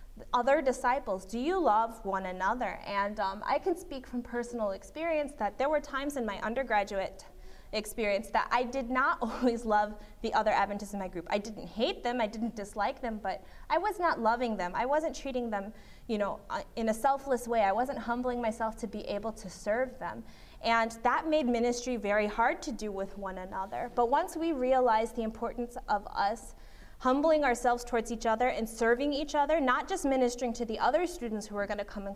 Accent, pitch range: American, 210-275 Hz